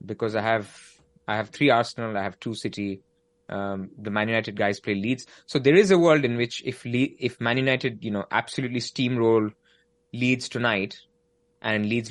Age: 20-39